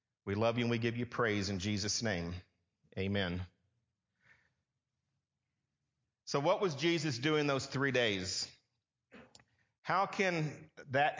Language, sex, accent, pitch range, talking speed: English, male, American, 115-175 Hz, 125 wpm